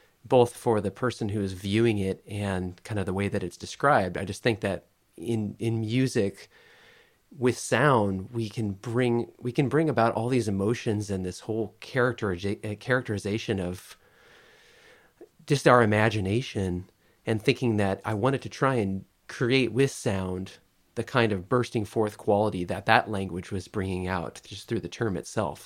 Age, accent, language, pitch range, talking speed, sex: 30-49, American, English, 95-120 Hz, 170 wpm, male